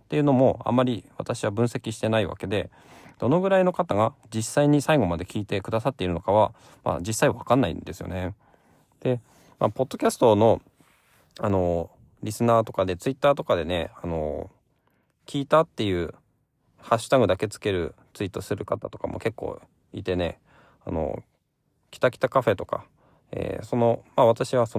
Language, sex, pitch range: Japanese, male, 95-135 Hz